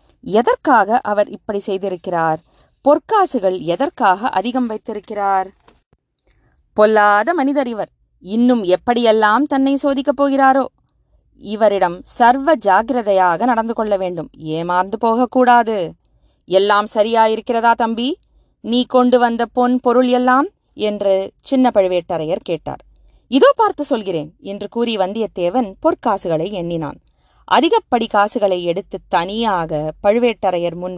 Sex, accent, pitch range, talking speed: female, native, 190-250 Hz, 100 wpm